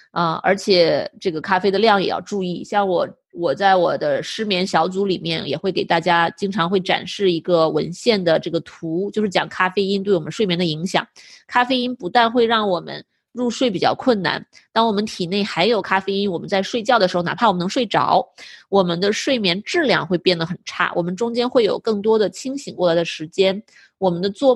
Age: 20-39